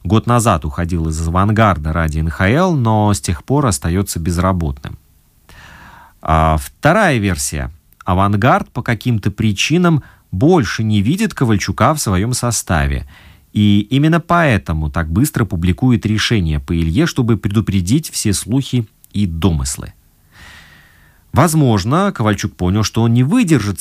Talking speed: 120 wpm